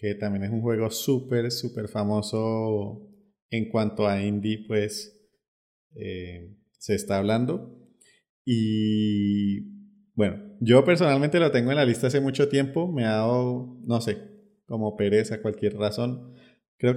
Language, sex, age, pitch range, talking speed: English, male, 30-49, 105-135 Hz, 140 wpm